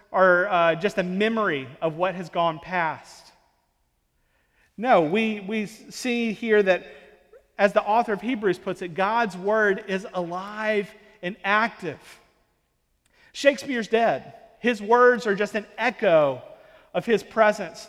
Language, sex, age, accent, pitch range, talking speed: English, male, 40-59, American, 190-235 Hz, 135 wpm